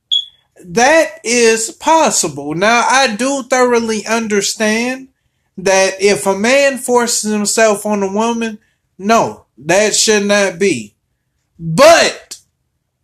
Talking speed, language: 105 wpm, English